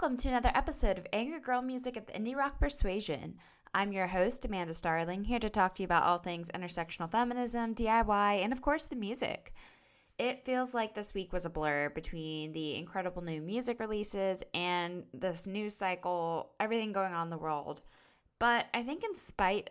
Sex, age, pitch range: female, 10-29, 165-215 Hz